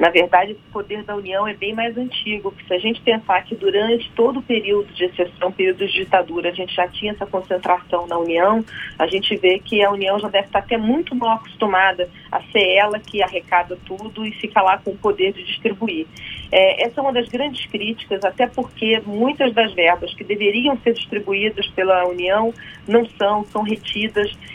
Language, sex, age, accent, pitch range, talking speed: Portuguese, female, 40-59, Brazilian, 190-240 Hz, 200 wpm